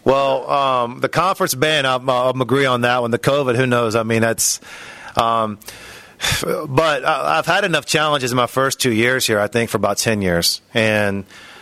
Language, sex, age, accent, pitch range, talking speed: English, male, 40-59, American, 110-130 Hz, 195 wpm